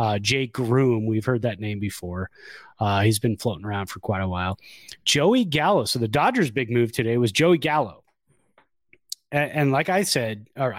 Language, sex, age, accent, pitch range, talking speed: English, male, 30-49, American, 115-145 Hz, 195 wpm